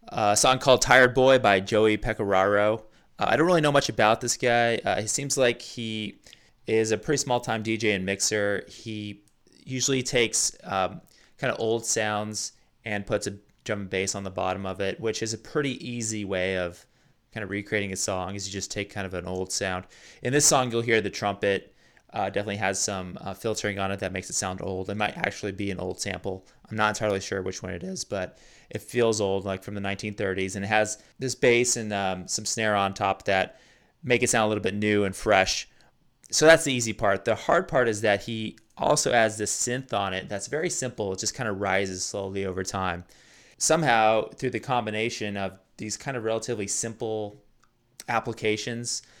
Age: 20-39